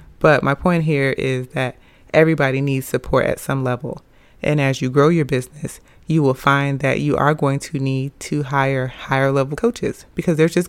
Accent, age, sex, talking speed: American, 30-49, female, 195 wpm